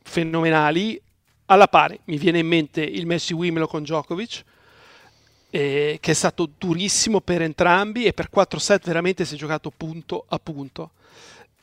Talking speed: 150 wpm